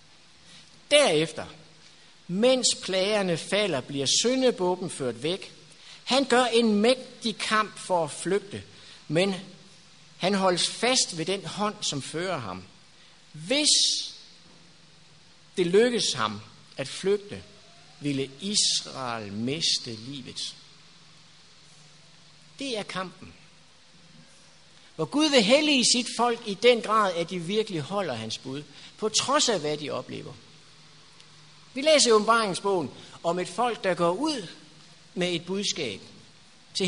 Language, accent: Danish, native